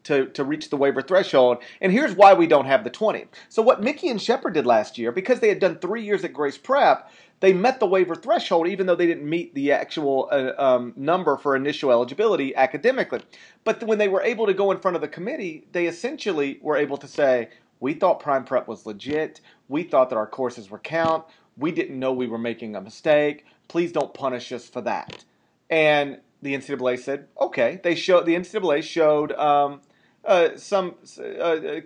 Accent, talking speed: American, 205 wpm